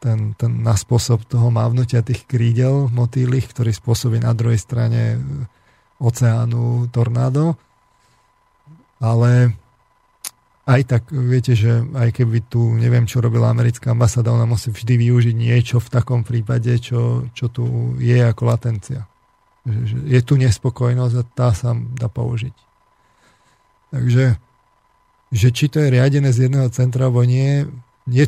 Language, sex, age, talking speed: Slovak, male, 40-59, 140 wpm